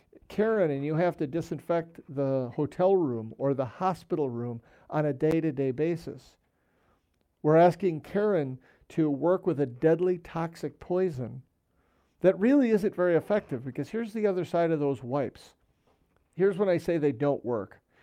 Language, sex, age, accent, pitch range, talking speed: English, male, 50-69, American, 140-180 Hz, 155 wpm